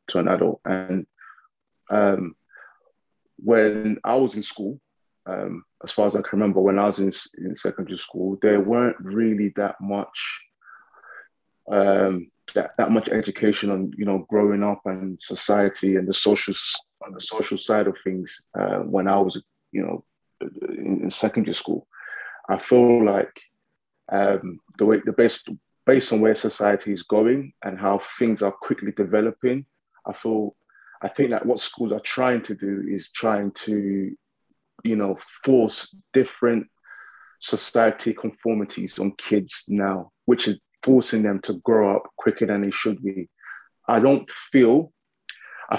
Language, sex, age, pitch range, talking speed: English, male, 20-39, 100-110 Hz, 155 wpm